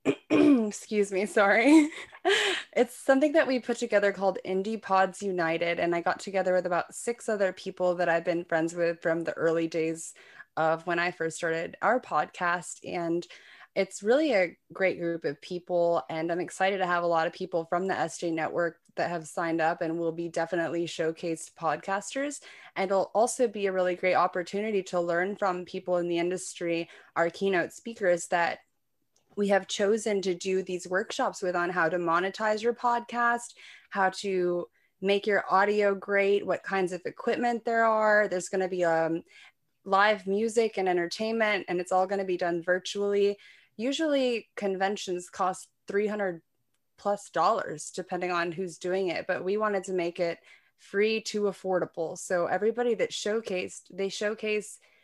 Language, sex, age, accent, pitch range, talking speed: English, female, 20-39, American, 170-205 Hz, 170 wpm